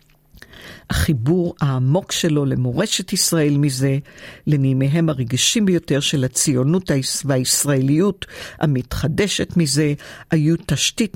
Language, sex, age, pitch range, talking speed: Hebrew, female, 50-69, 135-165 Hz, 85 wpm